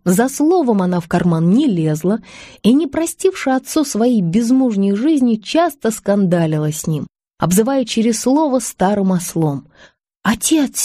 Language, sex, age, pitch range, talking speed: Russian, female, 20-39, 180-255 Hz, 135 wpm